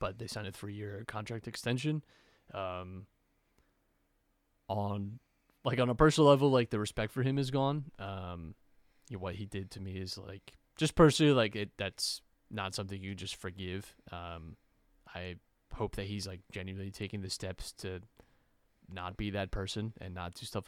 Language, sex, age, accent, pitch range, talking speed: English, male, 20-39, American, 95-115 Hz, 175 wpm